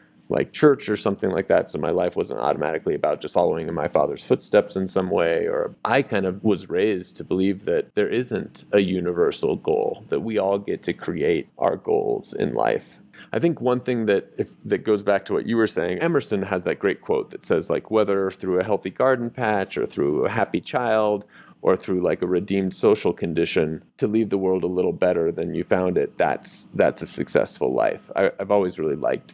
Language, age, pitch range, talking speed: English, 30-49, 95-145 Hz, 215 wpm